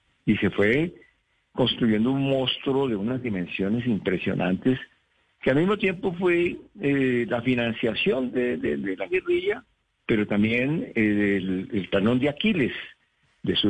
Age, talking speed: 50-69, 140 wpm